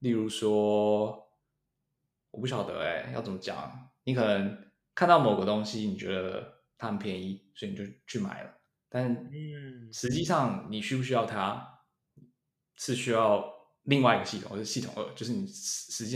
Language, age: Chinese, 20-39